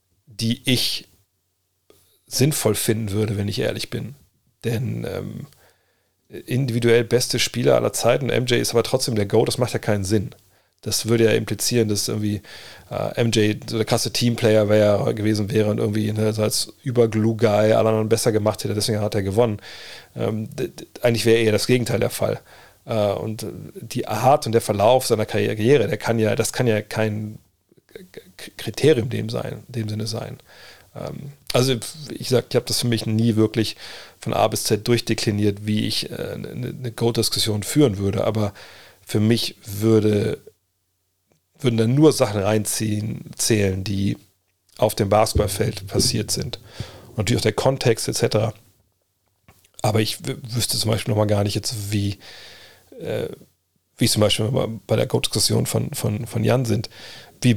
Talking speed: 165 wpm